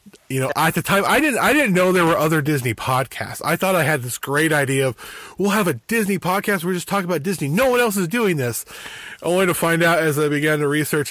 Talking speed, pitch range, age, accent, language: 265 wpm, 125-170 Hz, 20-39, American, English